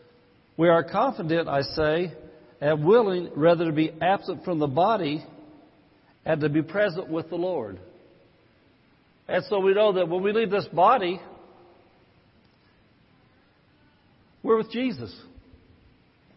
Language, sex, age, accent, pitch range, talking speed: English, male, 60-79, American, 155-195 Hz, 125 wpm